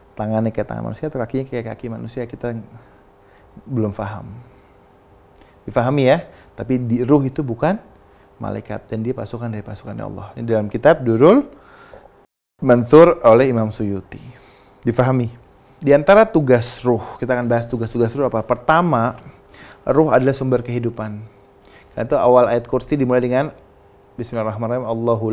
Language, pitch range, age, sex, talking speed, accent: Indonesian, 105-130 Hz, 30-49, male, 135 wpm, native